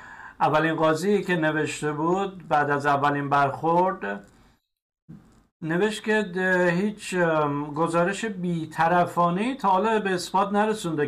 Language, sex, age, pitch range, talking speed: Persian, male, 50-69, 155-200 Hz, 105 wpm